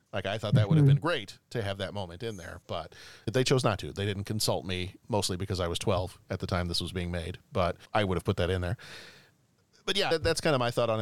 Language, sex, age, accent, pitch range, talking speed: English, male, 40-59, American, 100-135 Hz, 285 wpm